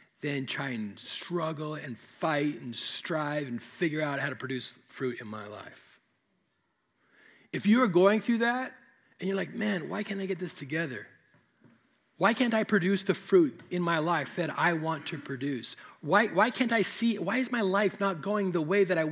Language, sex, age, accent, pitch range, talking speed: English, male, 30-49, American, 155-220 Hz, 200 wpm